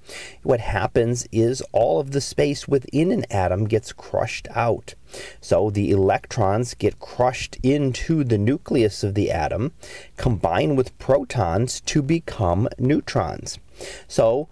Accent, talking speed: American, 130 wpm